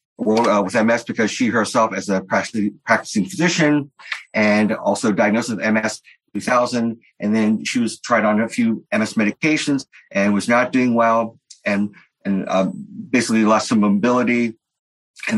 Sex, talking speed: male, 160 wpm